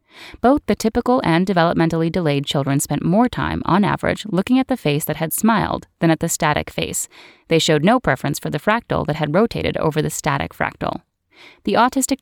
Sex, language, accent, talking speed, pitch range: female, English, American, 195 wpm, 150-220 Hz